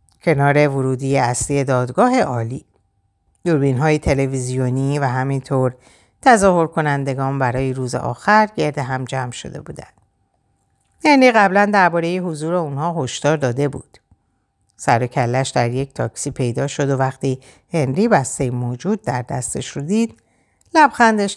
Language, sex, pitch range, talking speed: Persian, female, 125-190 Hz, 130 wpm